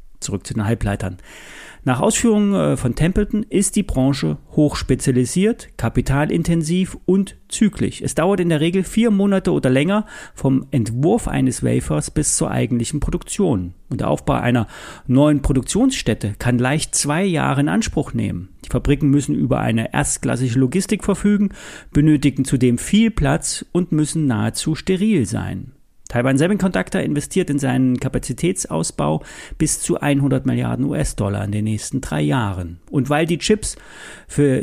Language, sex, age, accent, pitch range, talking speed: German, male, 40-59, German, 125-185 Hz, 145 wpm